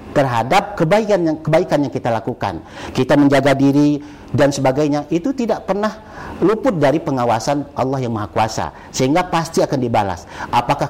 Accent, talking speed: native, 145 wpm